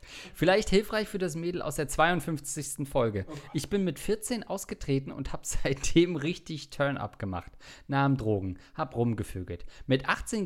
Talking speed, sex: 150 wpm, male